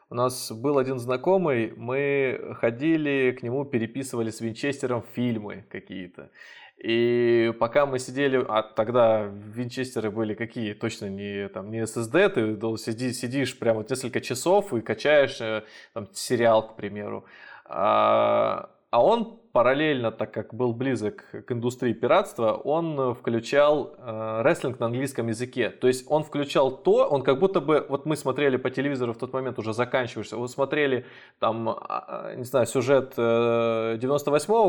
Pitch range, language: 115-170 Hz, Russian